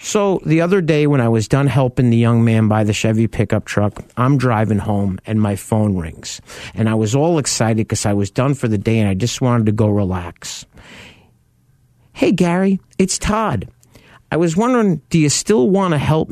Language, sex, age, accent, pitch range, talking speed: English, male, 50-69, American, 105-140 Hz, 205 wpm